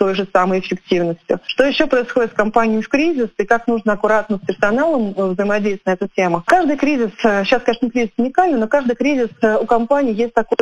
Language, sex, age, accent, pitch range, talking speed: Russian, female, 30-49, native, 195-235 Hz, 190 wpm